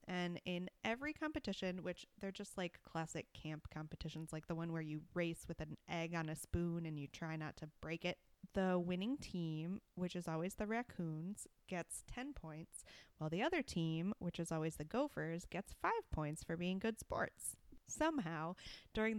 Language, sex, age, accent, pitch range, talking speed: English, female, 20-39, American, 160-195 Hz, 185 wpm